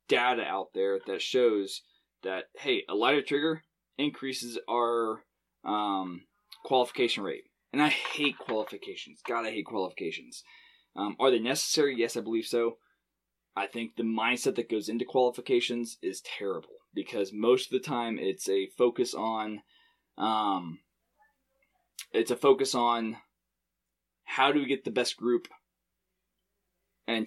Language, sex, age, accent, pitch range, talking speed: English, male, 20-39, American, 105-140 Hz, 135 wpm